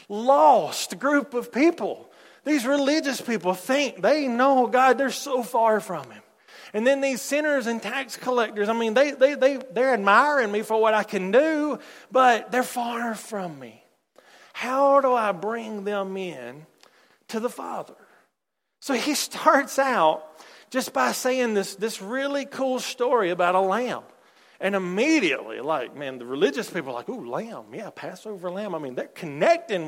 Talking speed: 165 wpm